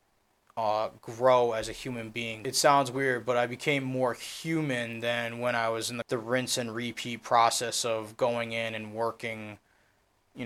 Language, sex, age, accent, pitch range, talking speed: English, male, 20-39, American, 110-130 Hz, 180 wpm